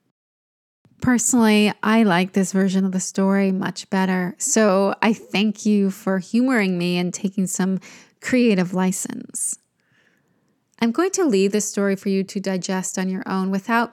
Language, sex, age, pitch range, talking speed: English, female, 20-39, 190-235 Hz, 155 wpm